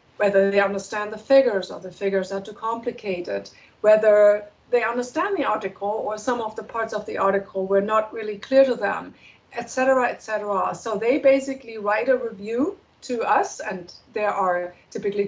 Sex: female